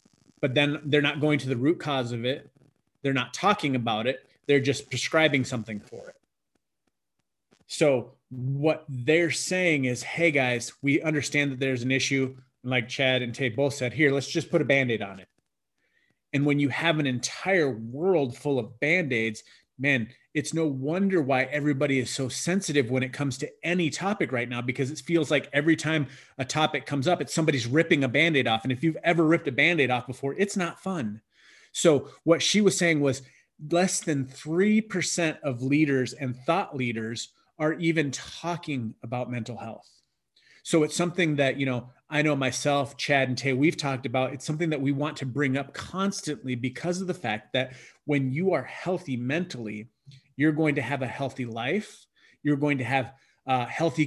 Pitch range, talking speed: 130-155 Hz, 190 wpm